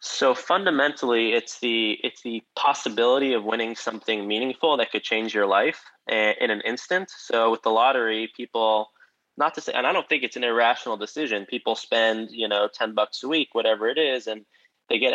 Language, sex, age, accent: English, male, 20-39, American